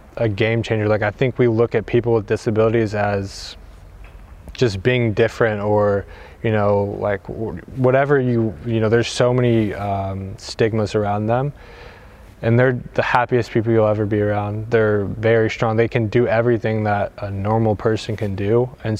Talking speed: 170 wpm